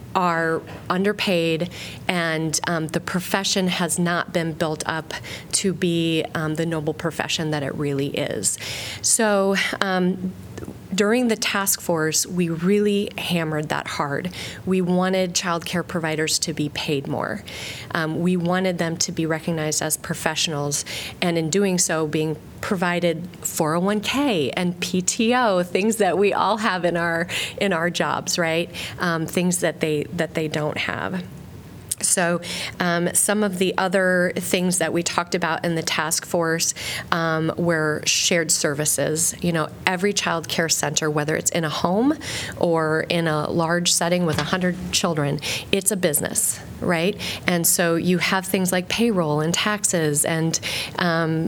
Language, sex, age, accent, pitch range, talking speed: English, female, 30-49, American, 155-185 Hz, 155 wpm